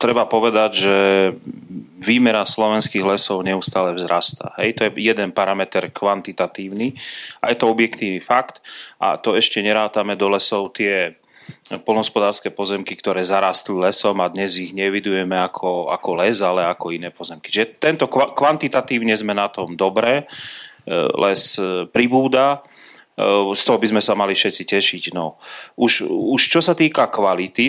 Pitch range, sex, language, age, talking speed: 95-115 Hz, male, Slovak, 30-49, 140 wpm